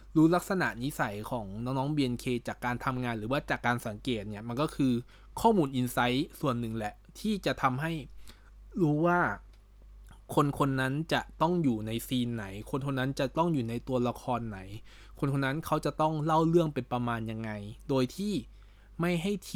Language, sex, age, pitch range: Thai, male, 20-39, 115-145 Hz